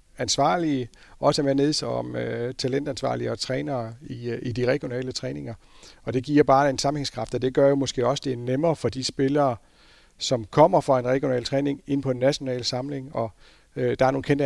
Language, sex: Danish, male